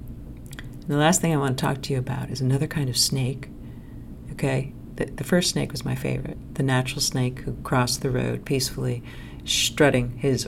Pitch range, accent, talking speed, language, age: 125-135 Hz, American, 190 wpm, English, 40-59